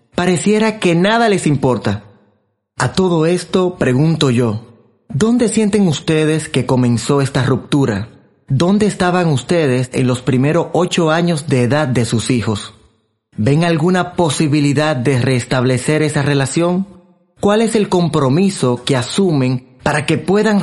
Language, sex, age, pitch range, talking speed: Spanish, male, 30-49, 130-180 Hz, 135 wpm